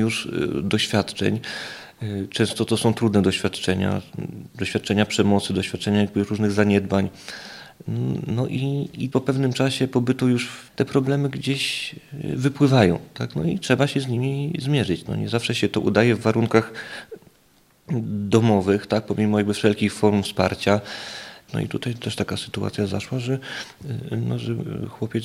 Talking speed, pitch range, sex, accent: 140 wpm, 105-135 Hz, male, native